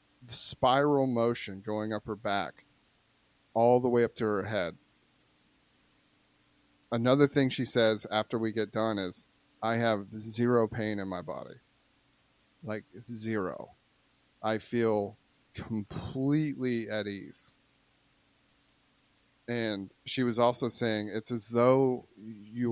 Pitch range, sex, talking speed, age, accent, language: 110-130 Hz, male, 125 wpm, 30-49, American, English